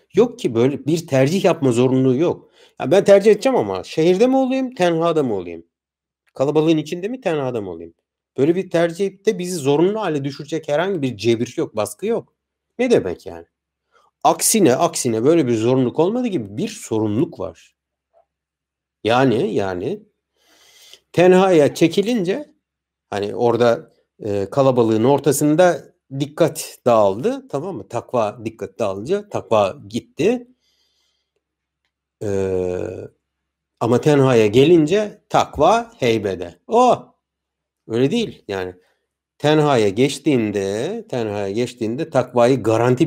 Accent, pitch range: native, 110-180 Hz